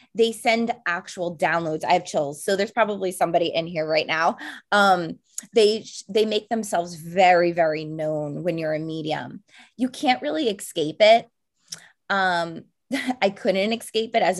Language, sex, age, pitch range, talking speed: English, female, 20-39, 165-230 Hz, 160 wpm